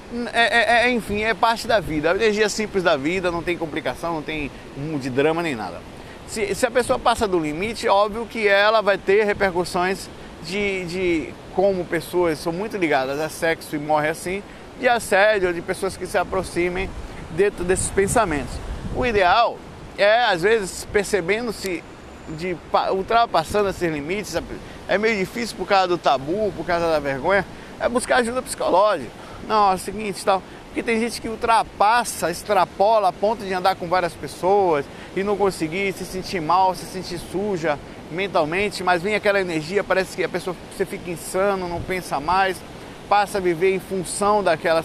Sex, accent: male, Brazilian